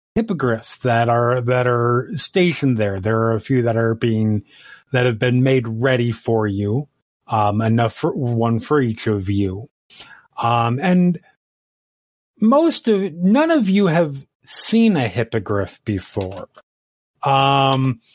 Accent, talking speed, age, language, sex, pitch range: American, 140 wpm, 30-49, English, male, 115-160 Hz